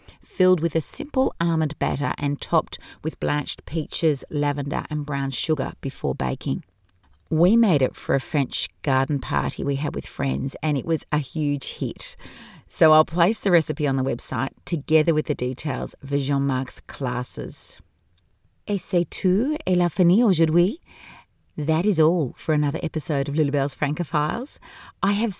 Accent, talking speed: Australian, 160 wpm